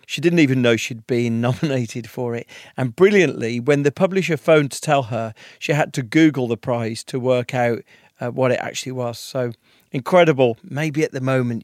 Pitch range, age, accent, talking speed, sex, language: 125-160 Hz, 40-59, British, 195 wpm, male, English